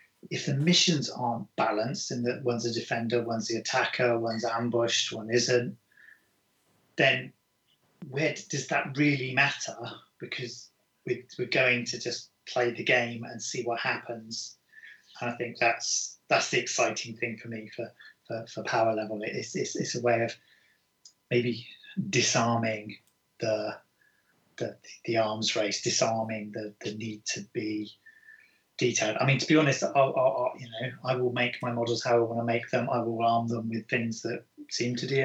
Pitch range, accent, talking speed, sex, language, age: 110-125 Hz, British, 170 wpm, male, English, 30-49